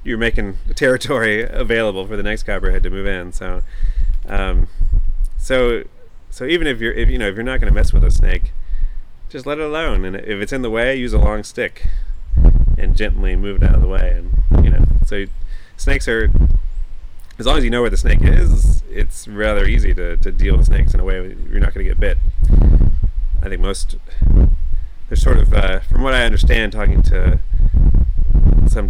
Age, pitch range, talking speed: 30-49, 80-100 Hz, 200 wpm